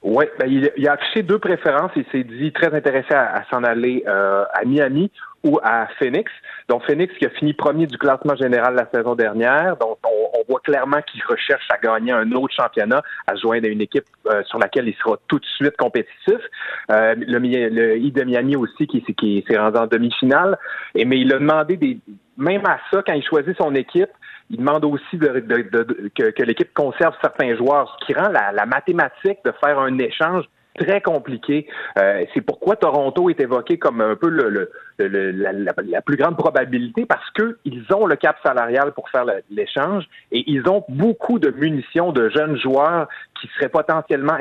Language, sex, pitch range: French, male, 125-185 Hz